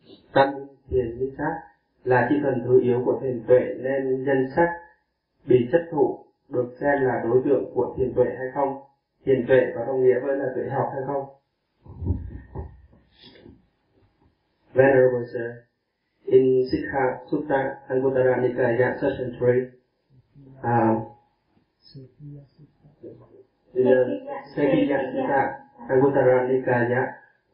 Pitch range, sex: 125-135 Hz, male